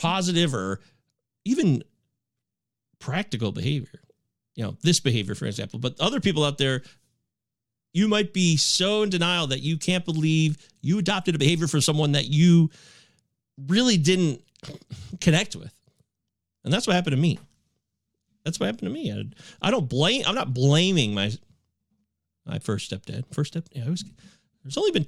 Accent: American